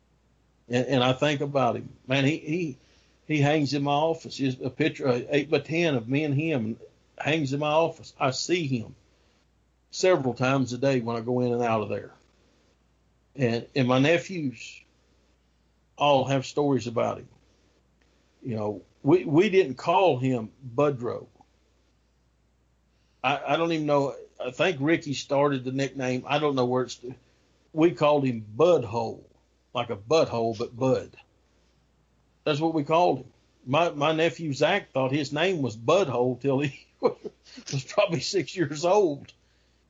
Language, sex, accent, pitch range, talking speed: English, male, American, 115-150 Hz, 160 wpm